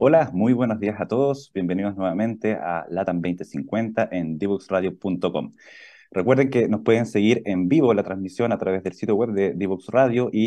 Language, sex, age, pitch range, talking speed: Spanish, male, 30-49, 90-110 Hz, 180 wpm